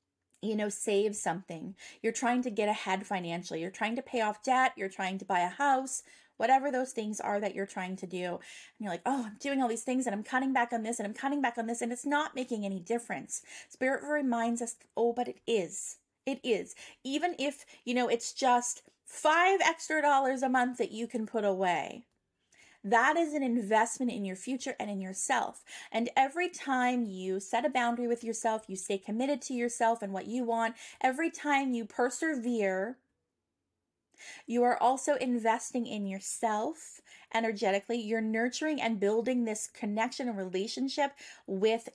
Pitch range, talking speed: 205-260 Hz, 185 wpm